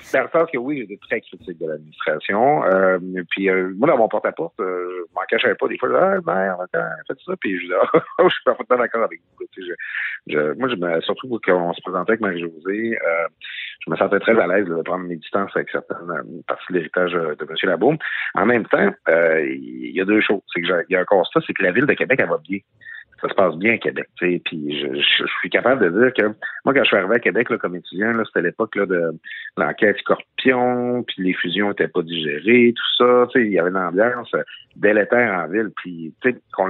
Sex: male